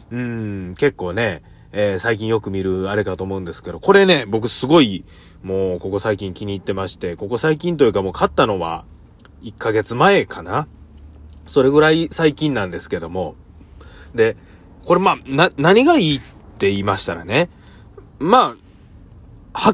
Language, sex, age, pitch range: Japanese, male, 30-49, 90-135 Hz